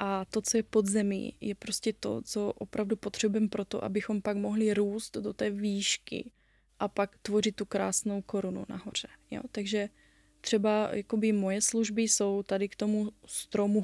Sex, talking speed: female, 160 wpm